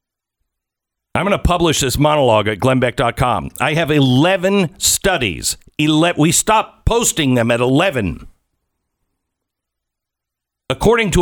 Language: English